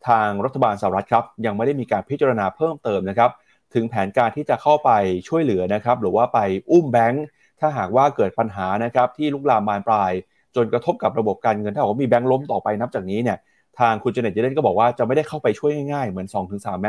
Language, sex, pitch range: Thai, male, 105-135 Hz